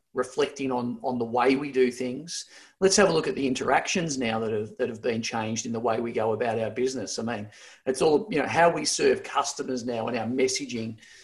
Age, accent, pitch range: 40-59, Australian, 120-140 Hz